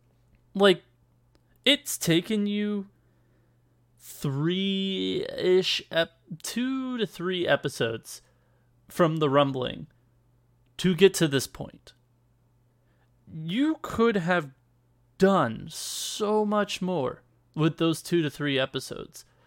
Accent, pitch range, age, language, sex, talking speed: American, 120-175 Hz, 20-39, English, male, 100 wpm